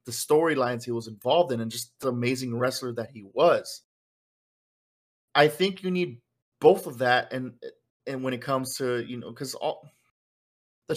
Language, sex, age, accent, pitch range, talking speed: English, male, 20-39, American, 115-130 Hz, 175 wpm